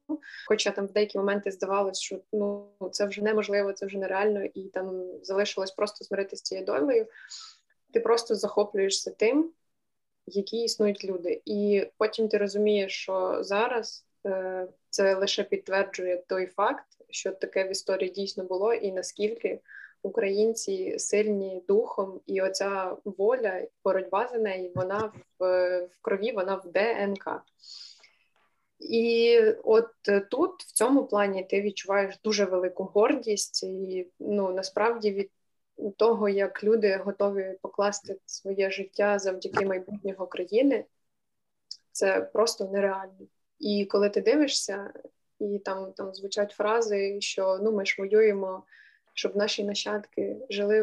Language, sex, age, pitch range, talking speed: Ukrainian, female, 20-39, 195-225 Hz, 130 wpm